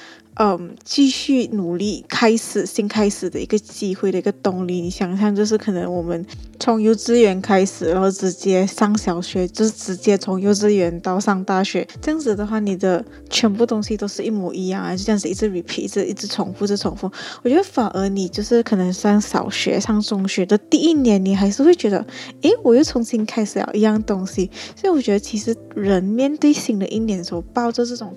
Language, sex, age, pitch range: Chinese, female, 10-29, 195-235 Hz